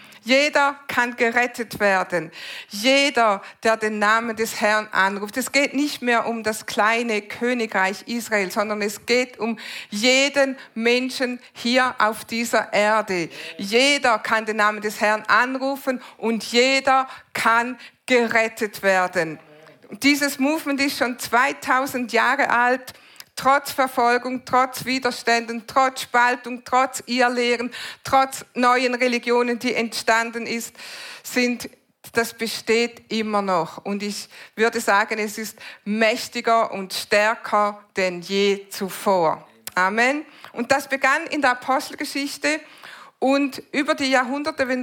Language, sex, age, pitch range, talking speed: German, female, 50-69, 215-260 Hz, 125 wpm